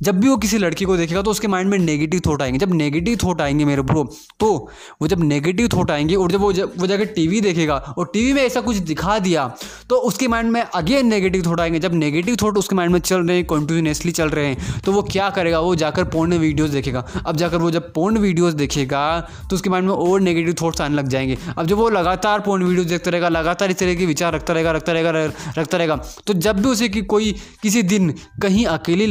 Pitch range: 155-200 Hz